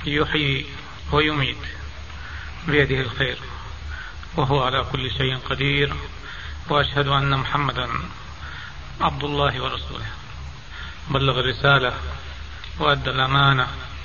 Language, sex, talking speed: Arabic, male, 80 wpm